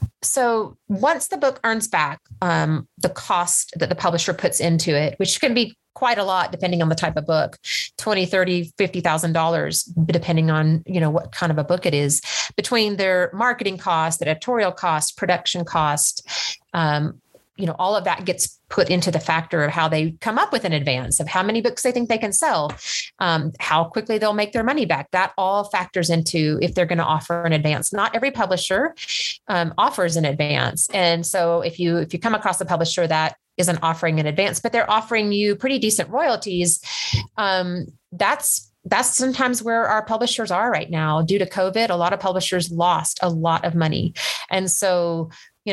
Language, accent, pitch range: English, American, 165-200 Hz